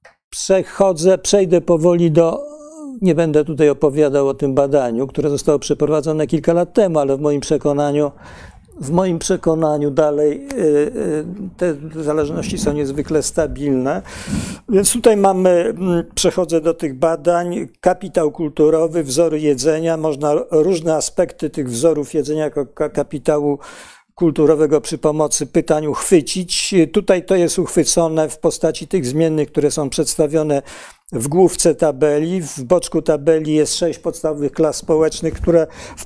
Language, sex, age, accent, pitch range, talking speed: Polish, male, 50-69, native, 145-170 Hz, 130 wpm